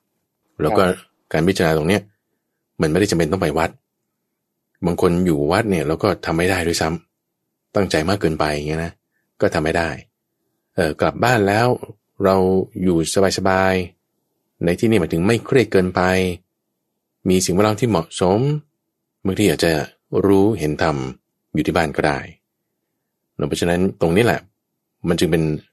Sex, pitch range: male, 80-100 Hz